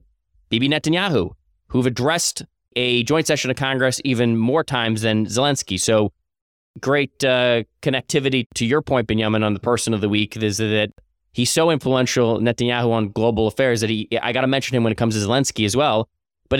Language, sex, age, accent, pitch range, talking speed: English, male, 20-39, American, 110-135 Hz, 185 wpm